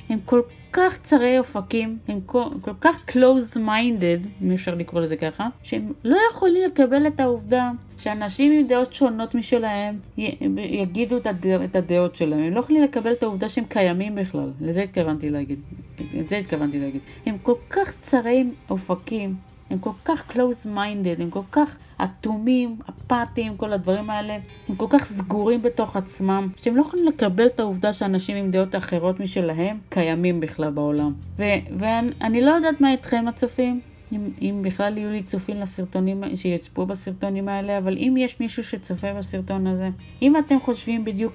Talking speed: 170 wpm